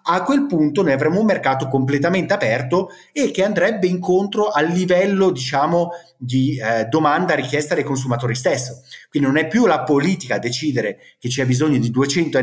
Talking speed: 175 wpm